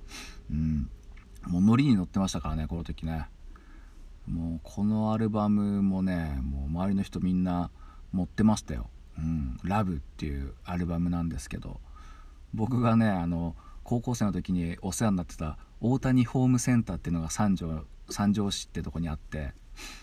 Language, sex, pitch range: Japanese, male, 80-110 Hz